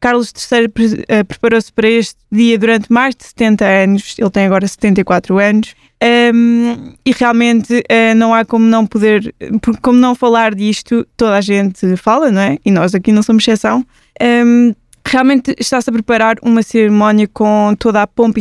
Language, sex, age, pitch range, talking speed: Portuguese, female, 20-39, 205-230 Hz, 160 wpm